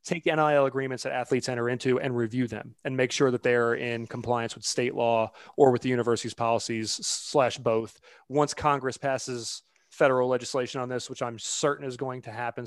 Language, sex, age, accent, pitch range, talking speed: English, male, 30-49, American, 120-140 Hz, 200 wpm